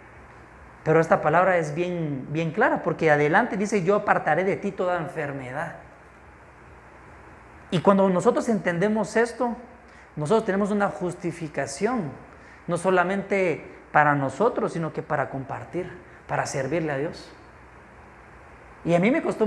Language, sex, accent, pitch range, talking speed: Spanish, male, Mexican, 150-190 Hz, 130 wpm